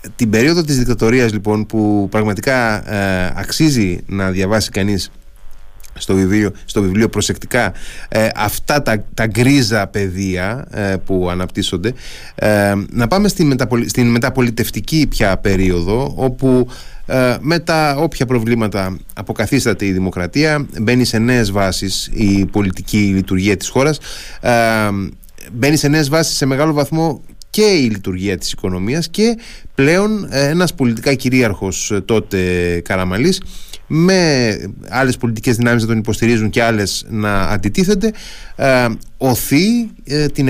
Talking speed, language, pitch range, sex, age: 130 wpm, Greek, 100-140 Hz, male, 30-49